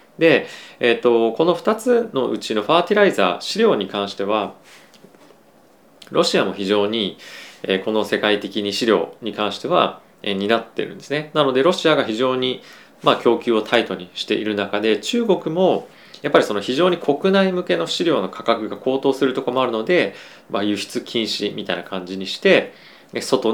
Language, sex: Japanese, male